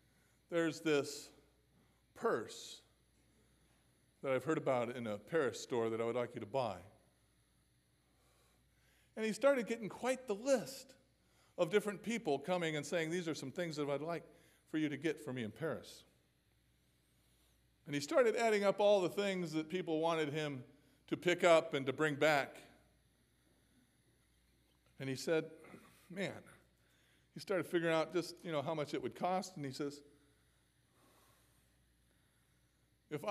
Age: 40-59